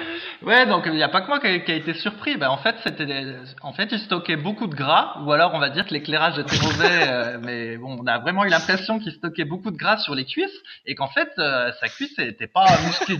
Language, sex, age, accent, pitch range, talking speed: French, male, 20-39, French, 150-220 Hz, 265 wpm